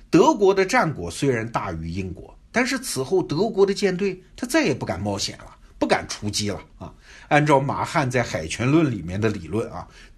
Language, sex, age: Chinese, male, 60-79